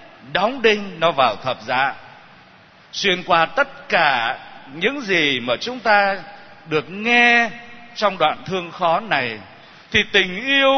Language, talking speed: Vietnamese, 140 wpm